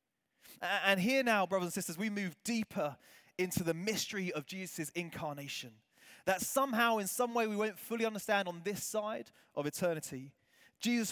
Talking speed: 160 wpm